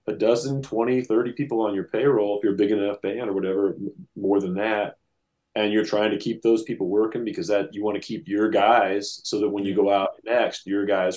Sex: male